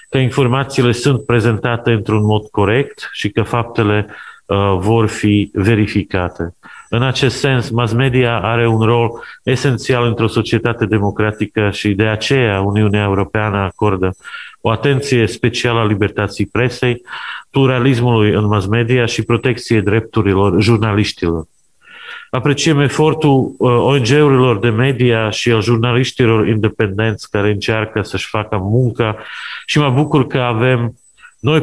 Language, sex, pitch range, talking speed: Romanian, male, 105-125 Hz, 125 wpm